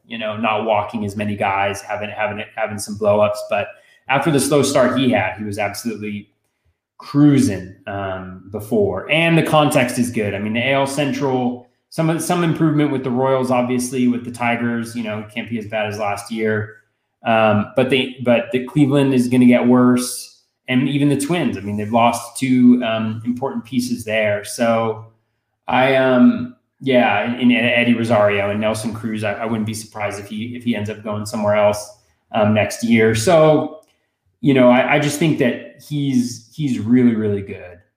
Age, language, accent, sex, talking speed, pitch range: 20-39, English, American, male, 190 wpm, 105-125 Hz